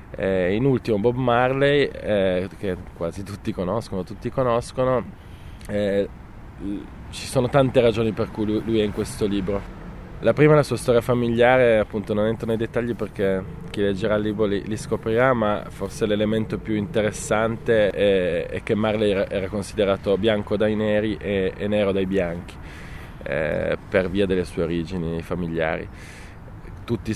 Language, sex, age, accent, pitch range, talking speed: Italian, male, 20-39, native, 95-115 Hz, 160 wpm